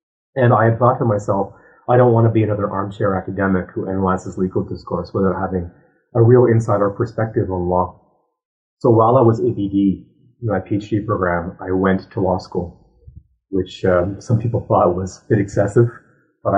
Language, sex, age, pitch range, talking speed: English, male, 30-49, 90-110 Hz, 180 wpm